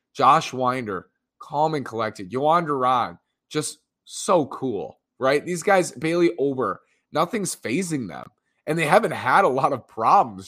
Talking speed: 150 wpm